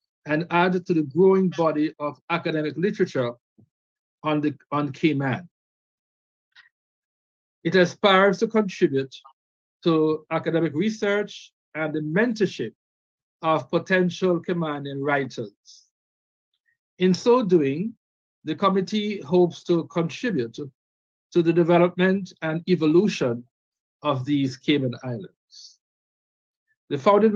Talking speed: 100 wpm